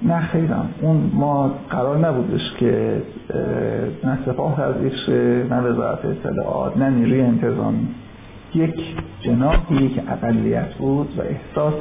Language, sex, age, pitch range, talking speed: Persian, male, 50-69, 125-180 Hz, 125 wpm